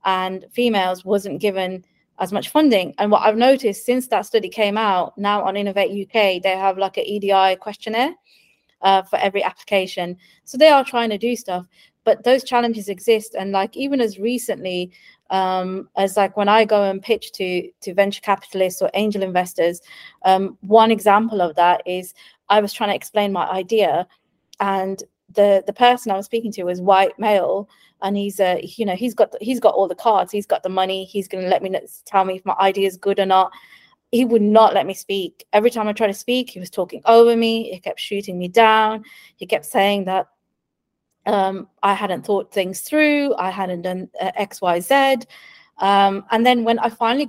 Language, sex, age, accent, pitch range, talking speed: English, female, 20-39, British, 190-230 Hz, 205 wpm